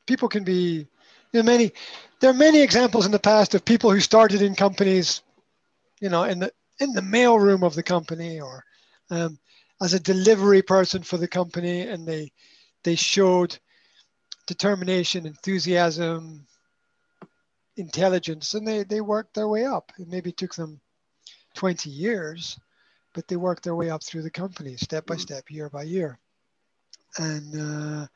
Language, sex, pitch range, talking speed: English, male, 165-210 Hz, 150 wpm